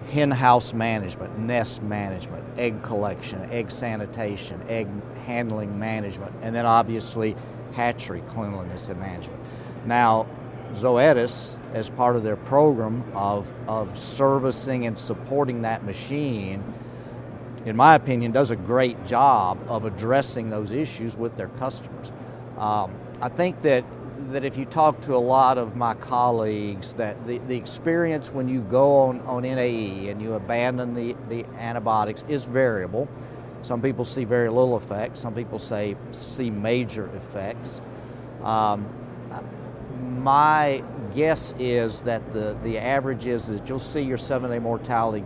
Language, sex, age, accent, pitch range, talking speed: English, male, 50-69, American, 110-130 Hz, 140 wpm